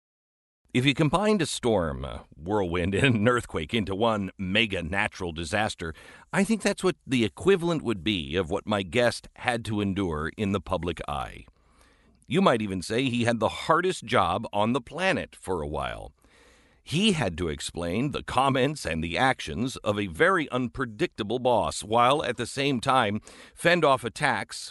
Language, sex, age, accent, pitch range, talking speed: English, male, 50-69, American, 90-130 Hz, 170 wpm